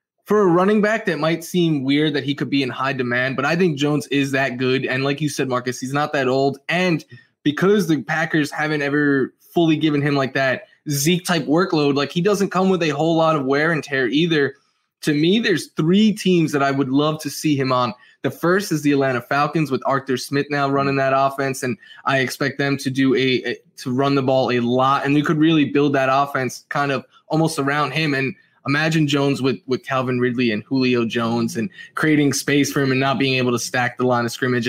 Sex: male